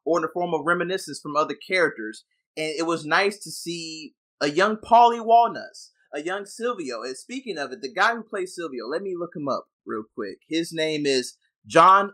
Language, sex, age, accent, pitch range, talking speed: English, male, 20-39, American, 145-200 Hz, 210 wpm